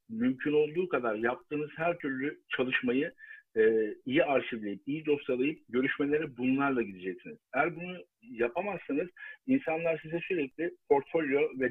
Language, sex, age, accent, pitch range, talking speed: Turkish, male, 50-69, native, 130-175 Hz, 120 wpm